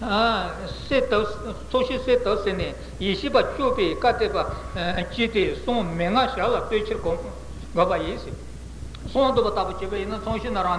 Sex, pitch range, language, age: male, 185-240 Hz, Italian, 60-79